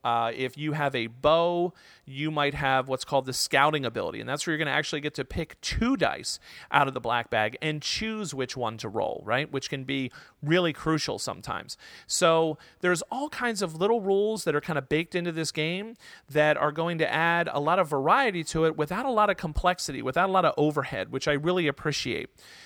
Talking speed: 220 wpm